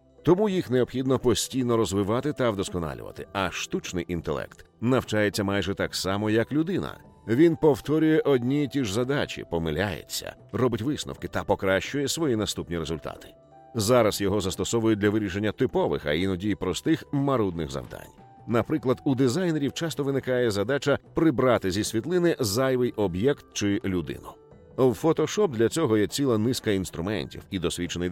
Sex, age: male, 50-69